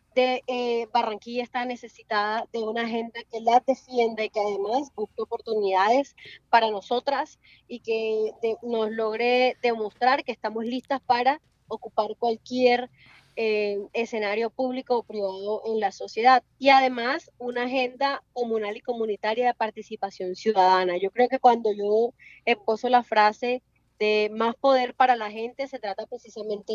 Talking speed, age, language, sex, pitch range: 150 wpm, 20-39, Spanish, female, 220-255 Hz